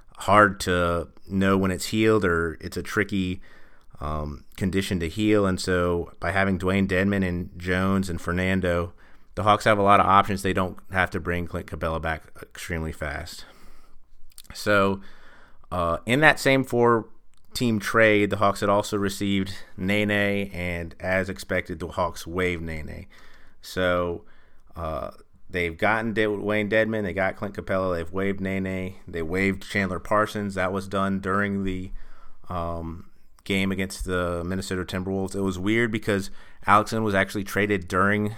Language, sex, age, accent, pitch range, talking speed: English, male, 30-49, American, 90-100 Hz, 155 wpm